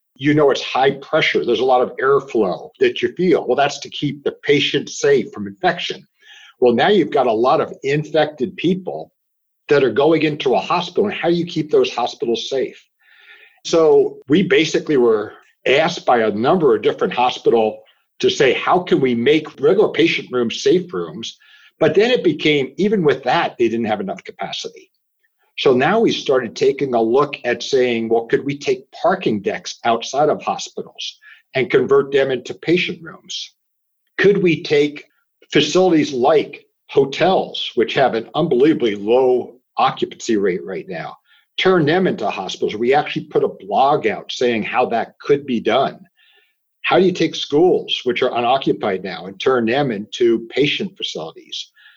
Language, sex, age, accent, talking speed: English, male, 60-79, American, 170 wpm